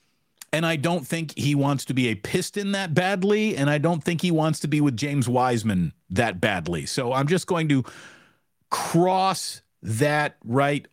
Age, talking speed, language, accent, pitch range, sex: 40-59, 180 wpm, English, American, 120-180 Hz, male